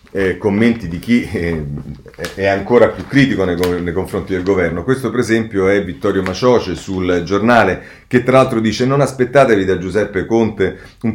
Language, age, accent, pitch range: Italian, 40-59, native, 85-115 Hz